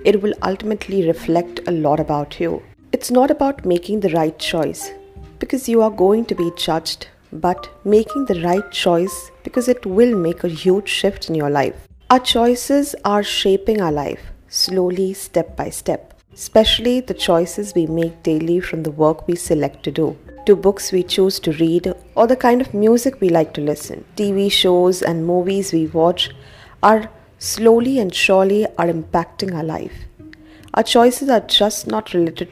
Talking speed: 175 wpm